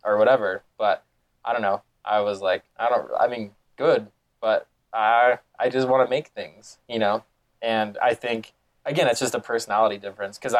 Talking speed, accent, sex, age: 190 wpm, American, male, 20-39